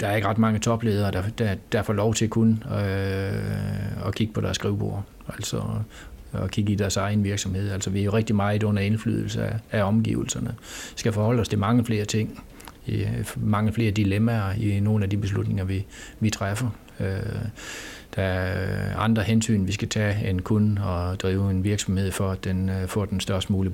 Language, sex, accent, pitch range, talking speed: Danish, male, native, 95-110 Hz, 195 wpm